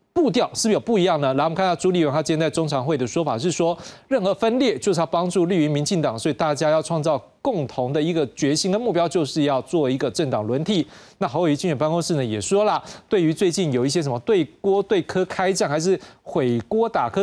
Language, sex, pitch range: Chinese, male, 145-190 Hz